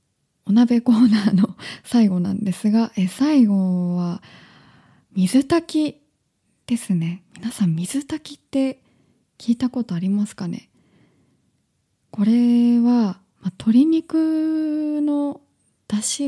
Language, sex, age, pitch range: Japanese, female, 20-39, 195-255 Hz